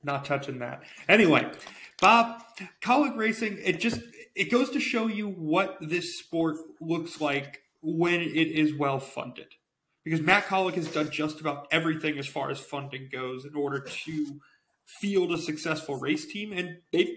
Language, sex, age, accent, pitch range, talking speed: English, male, 30-49, American, 145-190 Hz, 165 wpm